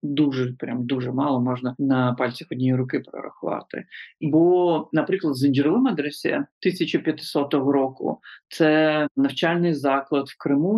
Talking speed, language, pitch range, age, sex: 120 wpm, Ukrainian, 140-175 Hz, 40-59, male